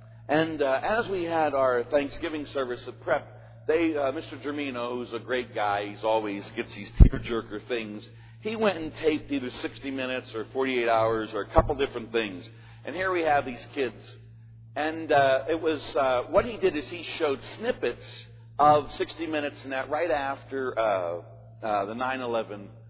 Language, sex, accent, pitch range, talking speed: English, male, American, 115-140 Hz, 180 wpm